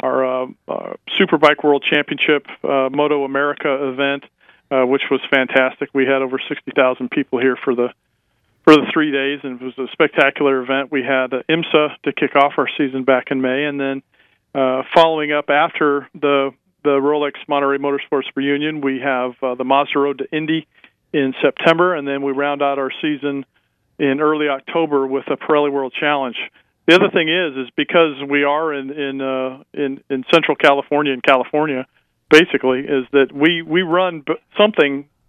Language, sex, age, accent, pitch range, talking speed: English, male, 40-59, American, 135-155 Hz, 180 wpm